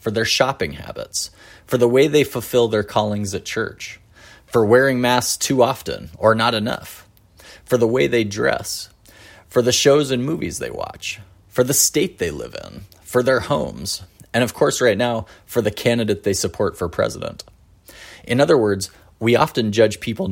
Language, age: English, 30-49